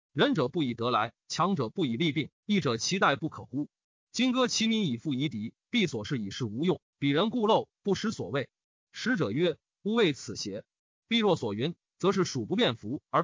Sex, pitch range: male, 145-220 Hz